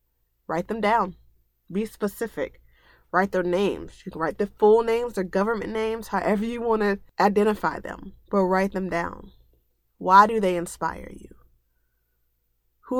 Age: 20-39